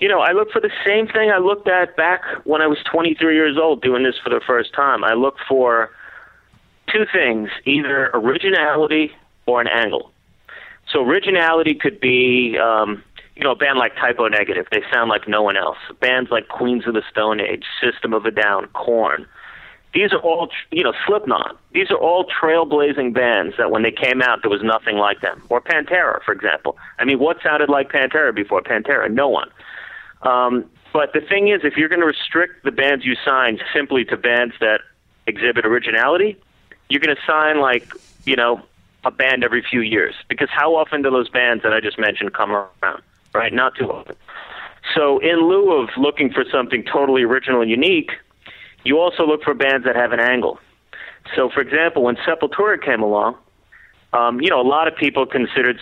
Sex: male